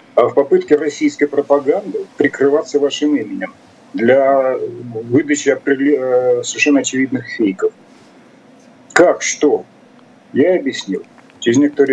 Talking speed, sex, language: 95 wpm, male, Russian